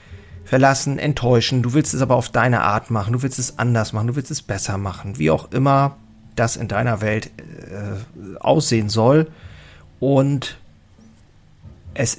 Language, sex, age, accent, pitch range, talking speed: German, male, 40-59, German, 105-130 Hz, 160 wpm